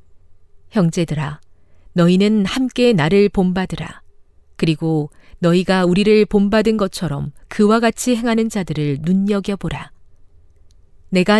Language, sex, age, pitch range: Korean, female, 40-59, 145-210 Hz